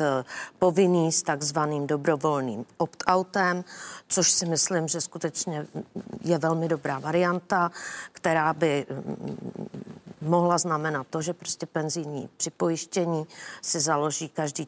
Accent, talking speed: native, 105 wpm